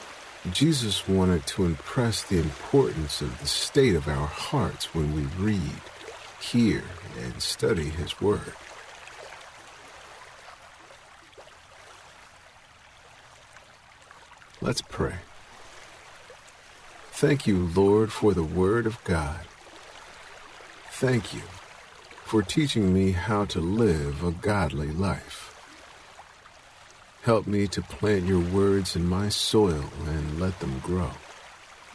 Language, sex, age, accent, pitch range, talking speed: English, male, 50-69, American, 85-105 Hz, 100 wpm